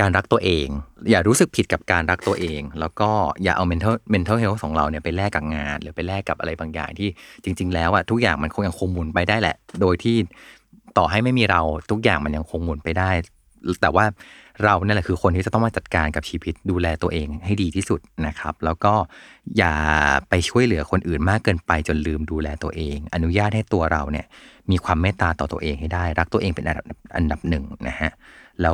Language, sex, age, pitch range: Thai, male, 30-49, 80-100 Hz